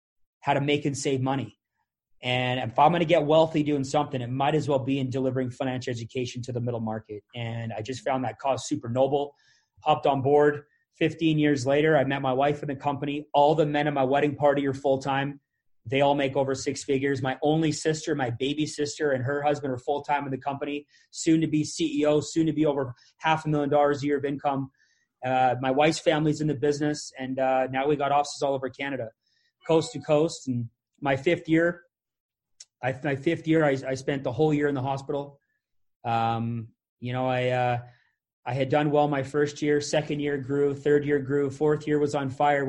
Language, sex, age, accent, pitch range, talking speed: English, male, 30-49, American, 130-145 Hz, 215 wpm